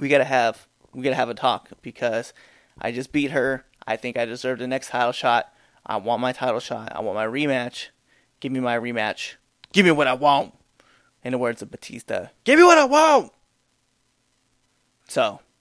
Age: 20-39